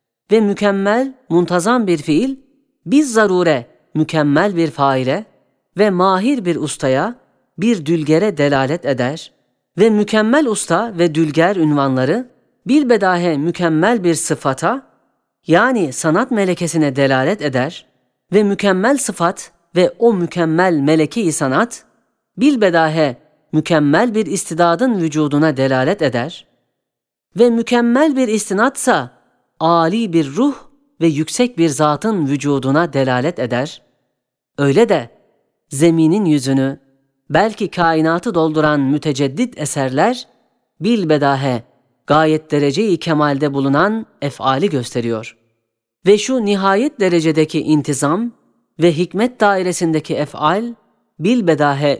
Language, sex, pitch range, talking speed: Turkish, female, 140-205 Hz, 100 wpm